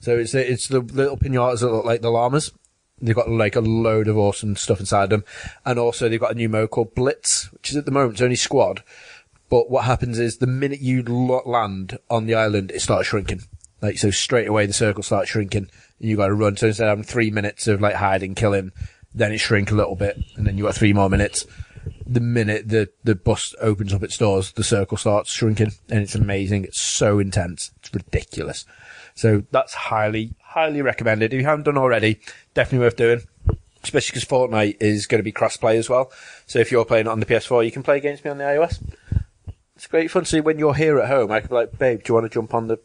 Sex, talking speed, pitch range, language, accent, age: male, 240 wpm, 105-120 Hz, English, British, 20-39